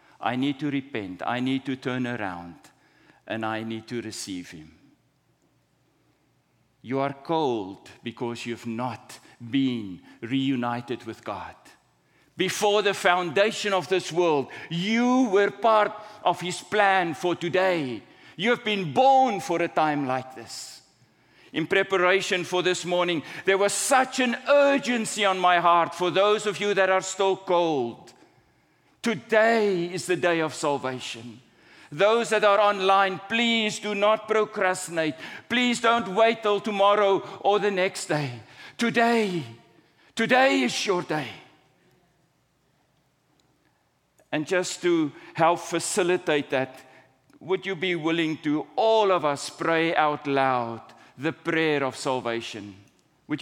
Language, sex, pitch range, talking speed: English, male, 135-200 Hz, 135 wpm